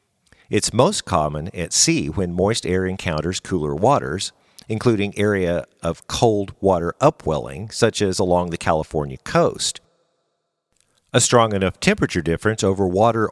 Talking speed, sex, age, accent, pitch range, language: 135 wpm, male, 50-69, American, 90-130 Hz, English